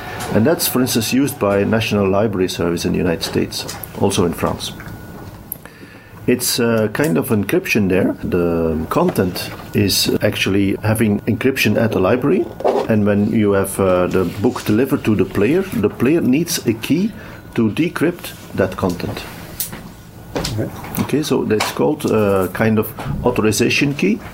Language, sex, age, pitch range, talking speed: Russian, male, 50-69, 95-115 Hz, 150 wpm